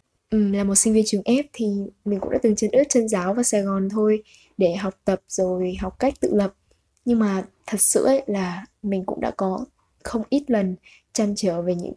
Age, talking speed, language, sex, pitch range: 10-29, 220 wpm, Vietnamese, female, 190-225 Hz